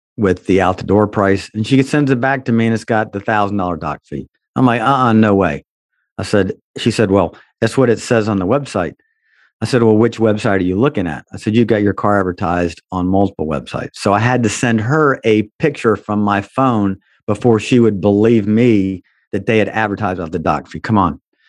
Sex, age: male, 50-69